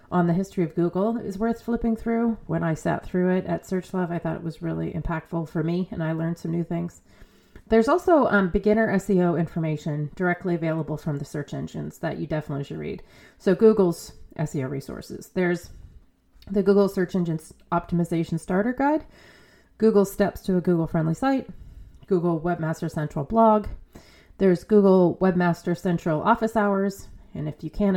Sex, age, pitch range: female, 30-49, 160-195 Hz